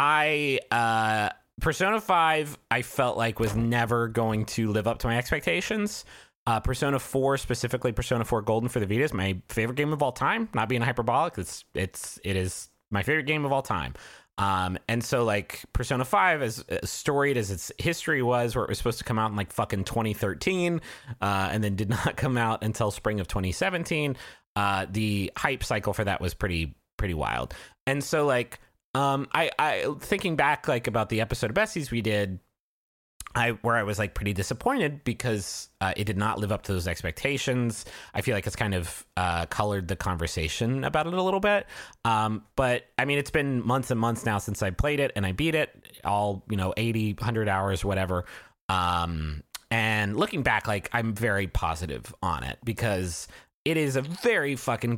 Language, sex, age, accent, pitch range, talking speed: English, male, 30-49, American, 100-130 Hz, 195 wpm